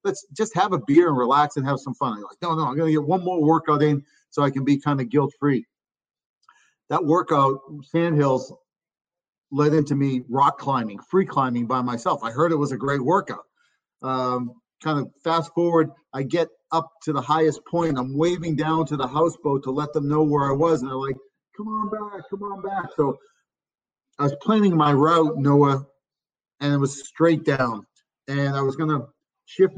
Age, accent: 50-69, American